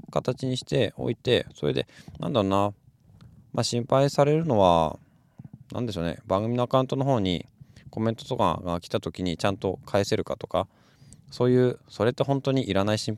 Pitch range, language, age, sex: 90-125 Hz, Japanese, 20-39, male